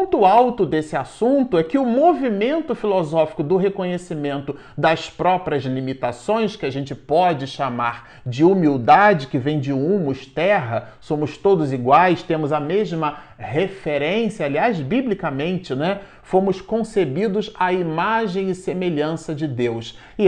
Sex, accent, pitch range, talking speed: male, Brazilian, 145-215 Hz, 135 wpm